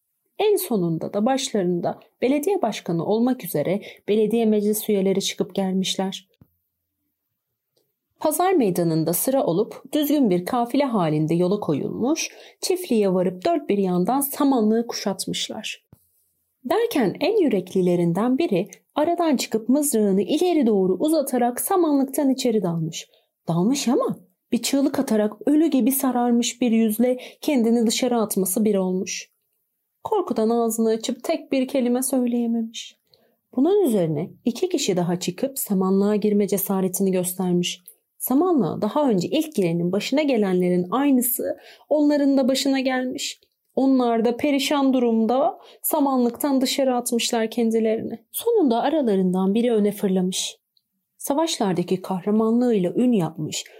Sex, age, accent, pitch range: female, 40-59, native, 190-275 Hz